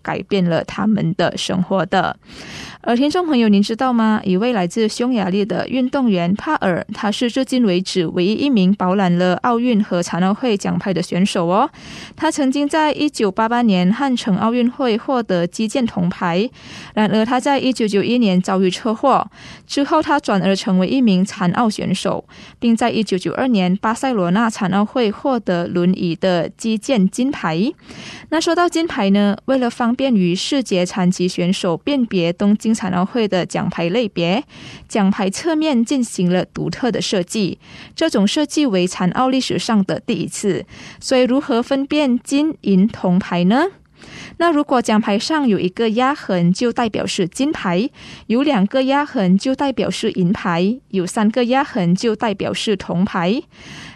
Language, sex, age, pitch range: Indonesian, female, 20-39, 185-255 Hz